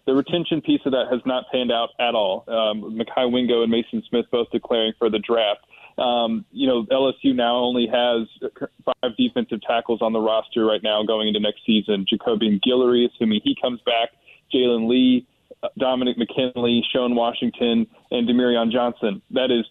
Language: English